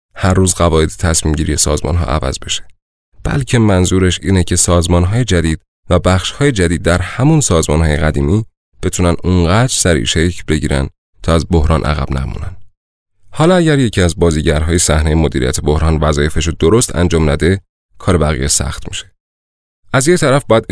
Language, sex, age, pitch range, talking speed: Persian, male, 30-49, 80-105 Hz, 160 wpm